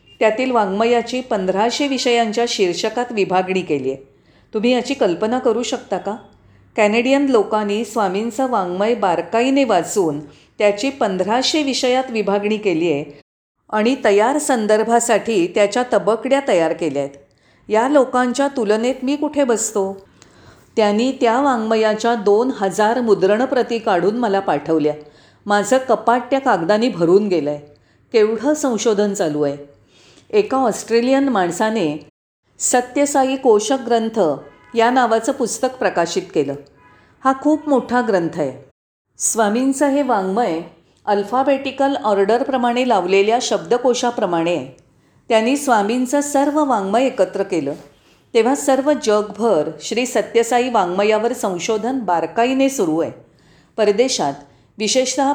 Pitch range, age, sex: 195-255 Hz, 40-59, female